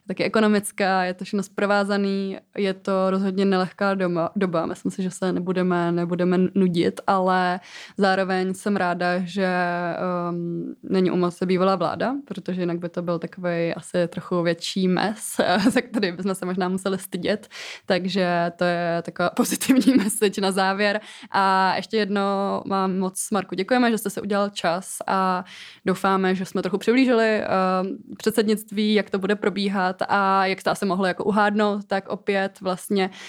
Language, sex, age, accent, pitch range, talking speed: Czech, female, 20-39, native, 175-195 Hz, 155 wpm